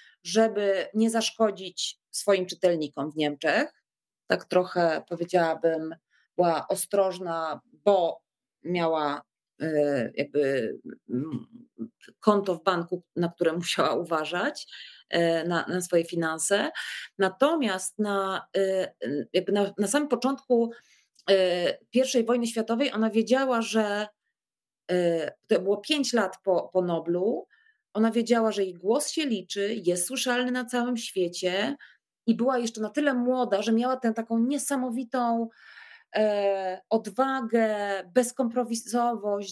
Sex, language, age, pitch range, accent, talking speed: female, Polish, 30-49, 185-235 Hz, native, 110 wpm